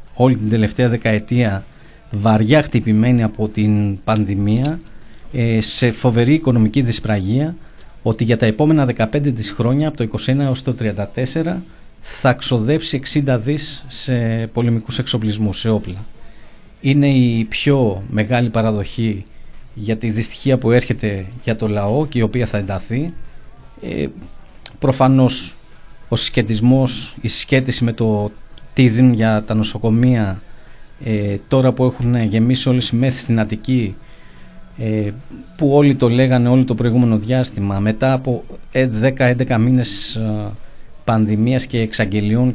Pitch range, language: 110-130 Hz, Greek